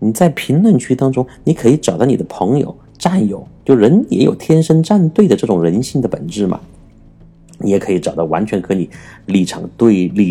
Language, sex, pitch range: Chinese, male, 90-120 Hz